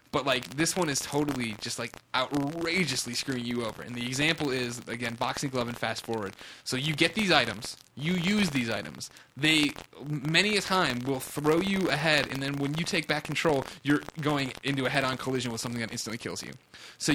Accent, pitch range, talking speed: American, 120-155 Hz, 205 wpm